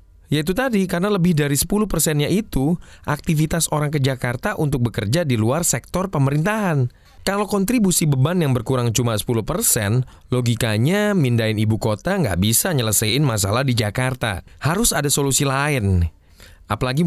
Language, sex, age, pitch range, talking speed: Indonesian, male, 20-39, 105-155 Hz, 140 wpm